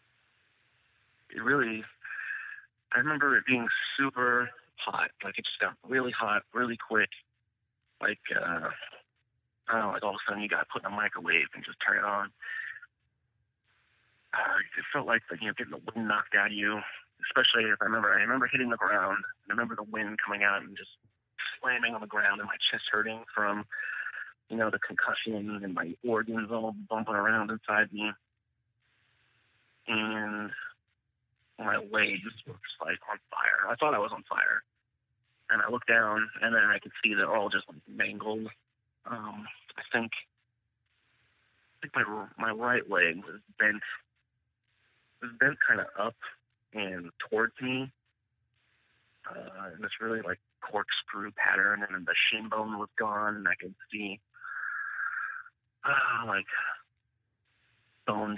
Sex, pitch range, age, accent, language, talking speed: male, 105-120 Hz, 40-59, American, English, 160 wpm